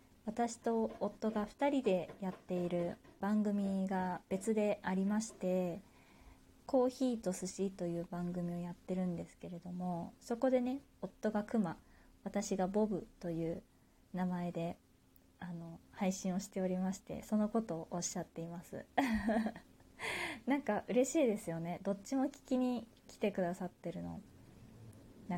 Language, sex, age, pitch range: Japanese, female, 20-39, 175-230 Hz